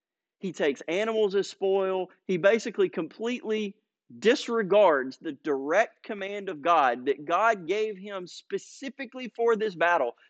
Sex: male